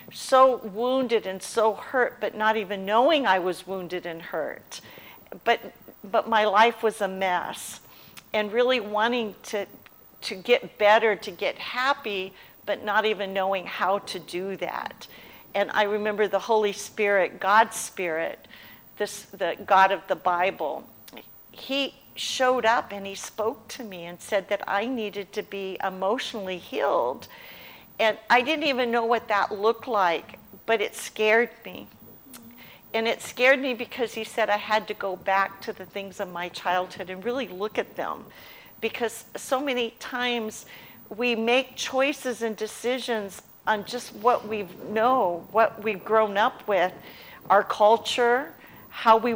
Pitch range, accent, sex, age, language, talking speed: 200-235 Hz, American, female, 50-69, English, 155 wpm